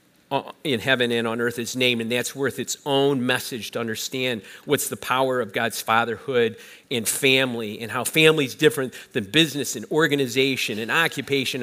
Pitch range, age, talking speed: 125-170 Hz, 50-69, 170 wpm